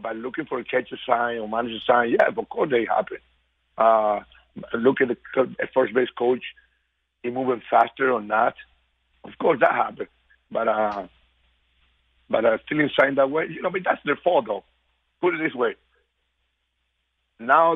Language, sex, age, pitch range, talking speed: English, male, 50-69, 80-125 Hz, 175 wpm